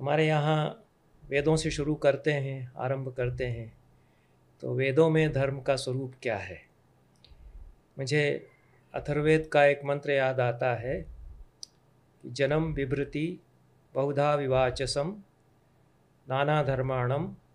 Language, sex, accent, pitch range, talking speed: Hindi, male, native, 130-145 Hz, 115 wpm